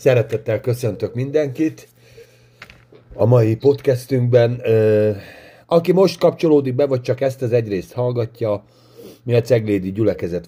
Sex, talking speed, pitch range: male, 120 wpm, 100-125 Hz